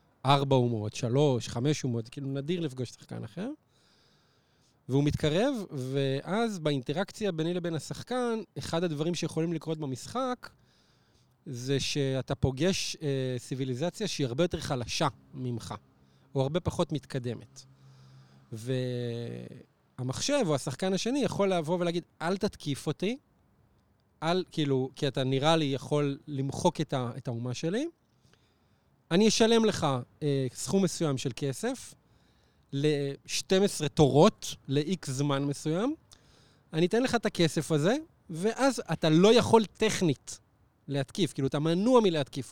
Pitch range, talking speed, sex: 130-175 Hz, 120 wpm, male